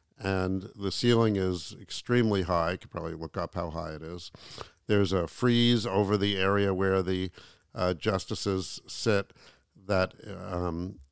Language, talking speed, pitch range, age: English, 150 wpm, 90-110 Hz, 50-69